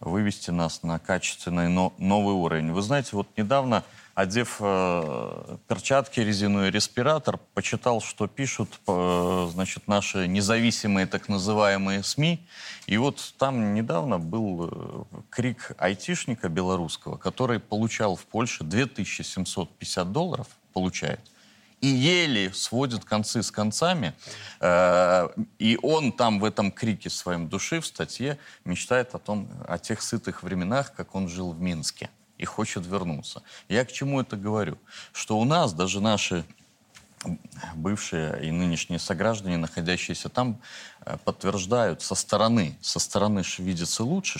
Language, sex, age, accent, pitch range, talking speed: Russian, male, 30-49, native, 90-115 Hz, 125 wpm